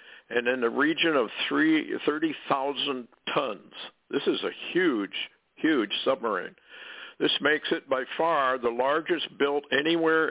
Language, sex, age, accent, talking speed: English, male, 60-79, American, 130 wpm